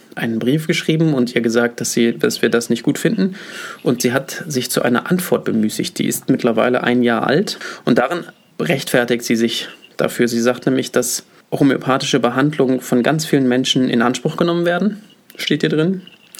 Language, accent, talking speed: English, German, 185 wpm